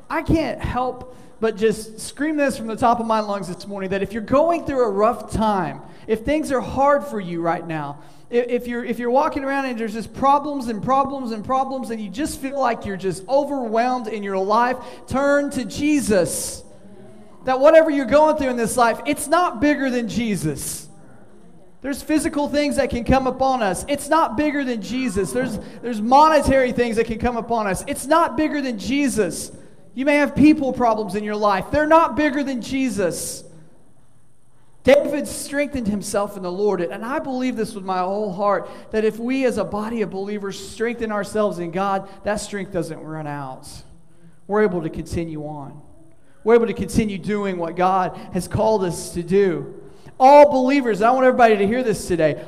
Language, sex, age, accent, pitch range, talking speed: English, male, 30-49, American, 200-275 Hz, 195 wpm